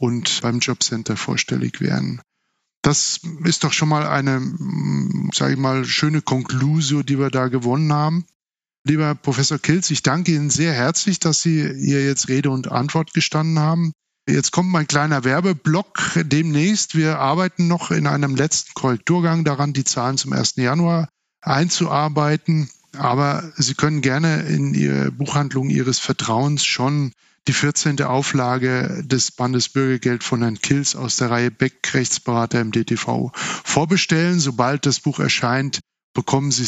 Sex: male